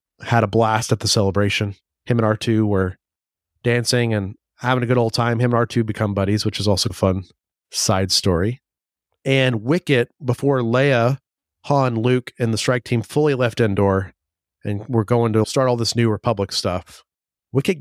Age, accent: 30-49, American